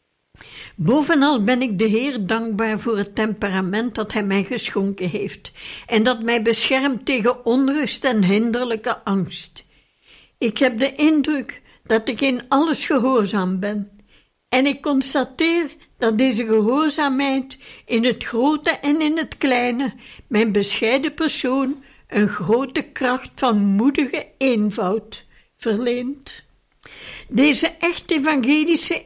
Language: Dutch